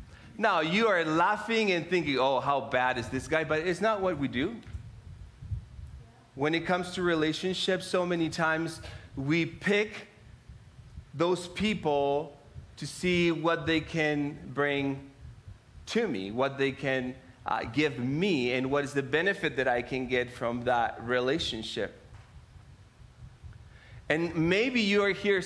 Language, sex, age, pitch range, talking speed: English, male, 30-49, 120-175 Hz, 145 wpm